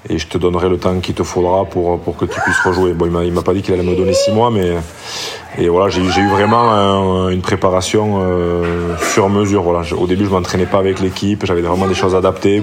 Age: 20-39